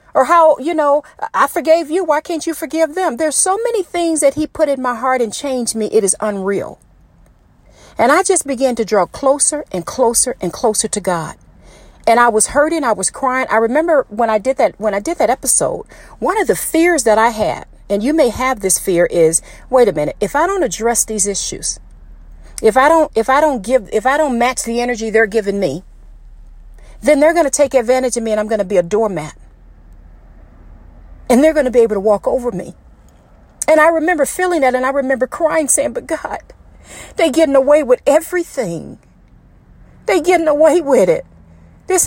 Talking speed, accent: 205 wpm, American